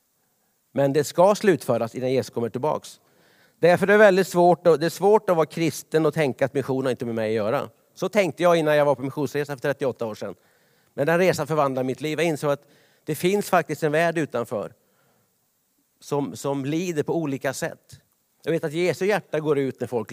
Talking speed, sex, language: 210 wpm, male, Swedish